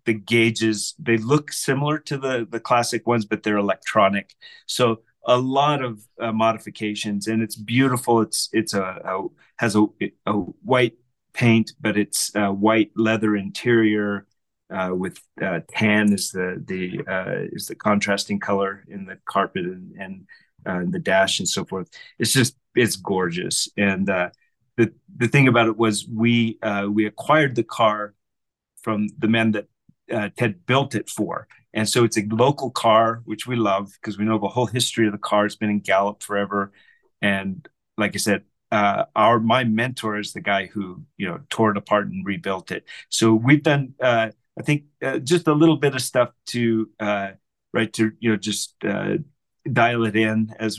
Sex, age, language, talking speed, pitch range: male, 30-49, English, 185 wpm, 105-120 Hz